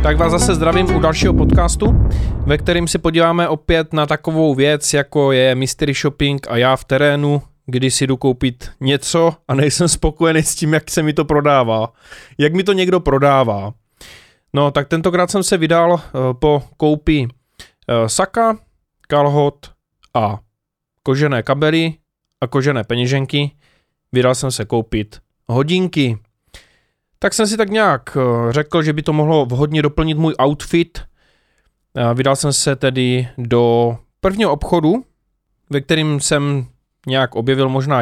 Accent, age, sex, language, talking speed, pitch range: native, 20-39, male, Czech, 145 wpm, 130-165 Hz